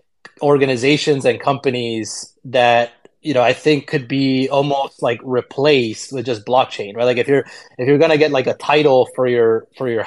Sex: male